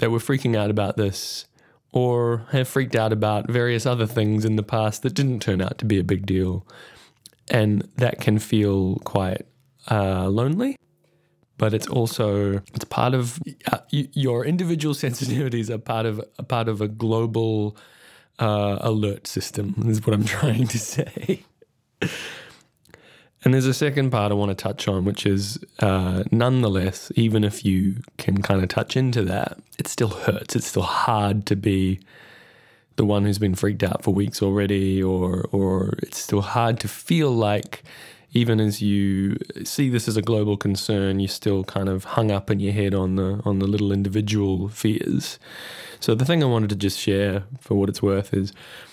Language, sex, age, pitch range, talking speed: English, male, 20-39, 100-120 Hz, 180 wpm